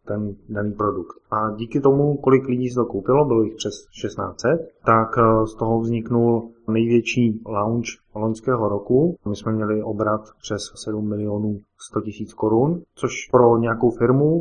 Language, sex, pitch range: Czech, male, 105-125 Hz